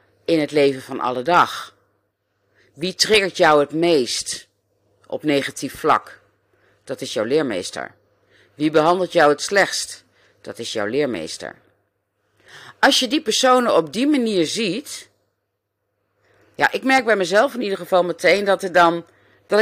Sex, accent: female, Dutch